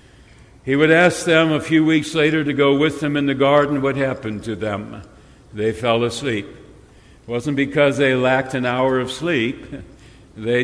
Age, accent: 60-79, American